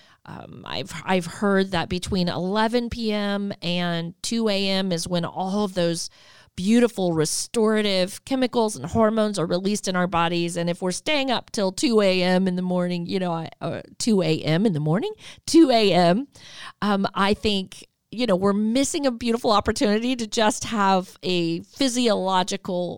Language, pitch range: English, 175-230 Hz